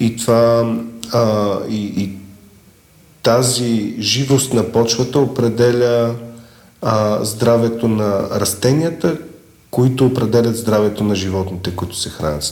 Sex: male